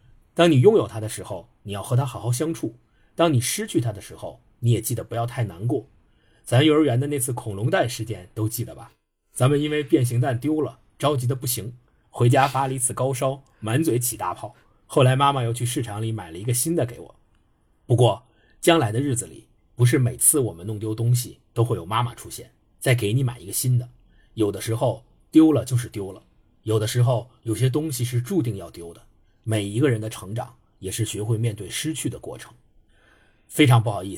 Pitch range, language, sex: 110-130 Hz, Chinese, male